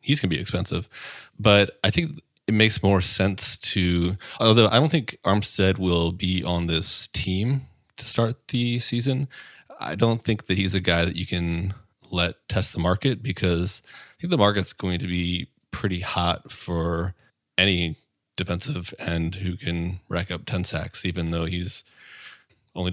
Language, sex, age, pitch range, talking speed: English, male, 30-49, 90-105 Hz, 170 wpm